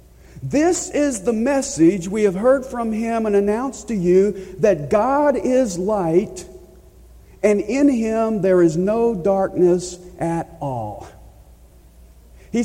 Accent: American